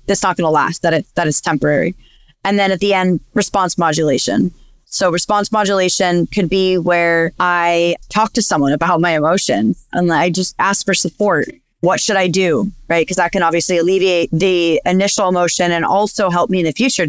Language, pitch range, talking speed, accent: English, 170-205 Hz, 185 wpm, American